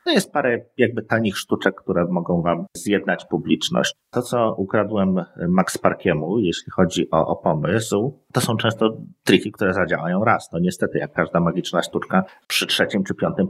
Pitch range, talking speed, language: 95-125 Hz, 170 wpm, Polish